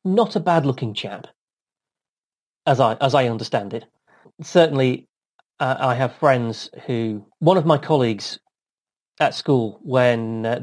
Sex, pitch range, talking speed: male, 115-145 Hz, 140 wpm